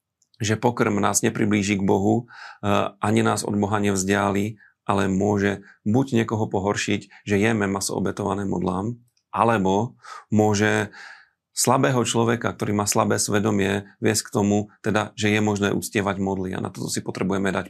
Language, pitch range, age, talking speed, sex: Slovak, 100-115 Hz, 40-59, 150 wpm, male